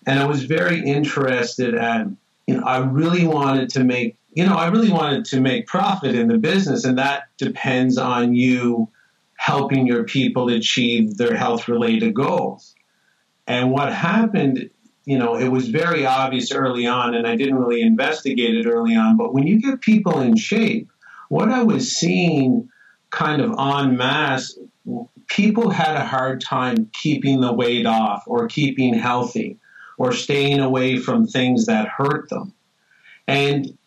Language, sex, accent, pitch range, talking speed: English, male, American, 125-180 Hz, 160 wpm